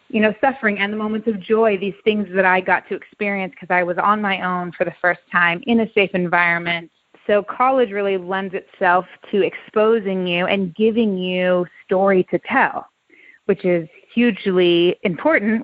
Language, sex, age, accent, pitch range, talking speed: English, female, 30-49, American, 180-220 Hz, 180 wpm